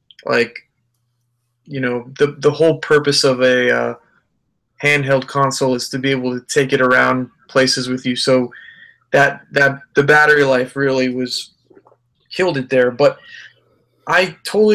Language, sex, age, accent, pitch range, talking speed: English, male, 20-39, American, 130-155 Hz, 150 wpm